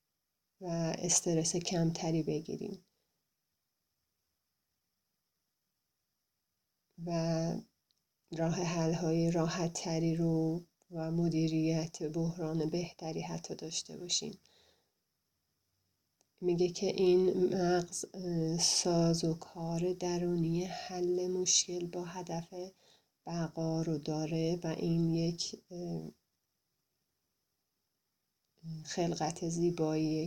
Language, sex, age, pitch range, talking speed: English, female, 30-49, 160-175 Hz, 75 wpm